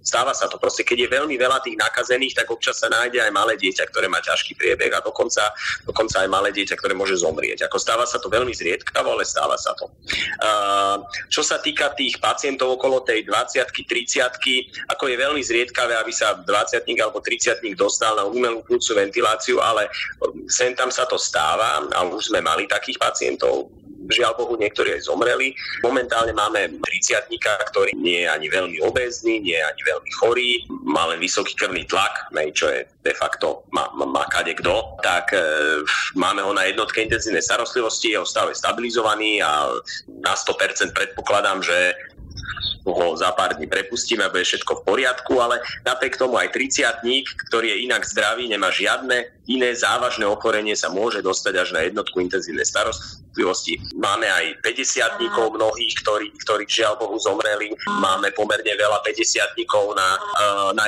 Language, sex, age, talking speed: Slovak, male, 30-49, 165 wpm